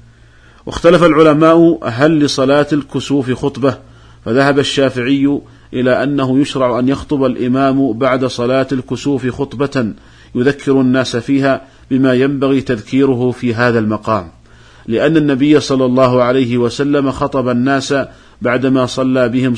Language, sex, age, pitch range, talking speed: Arabic, male, 50-69, 120-135 Hz, 115 wpm